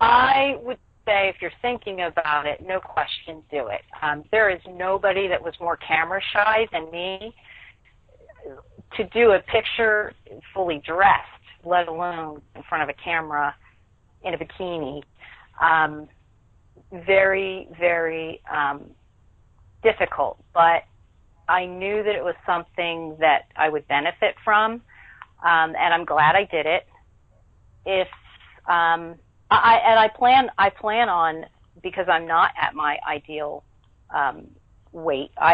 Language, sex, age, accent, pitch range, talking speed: English, female, 40-59, American, 150-190 Hz, 135 wpm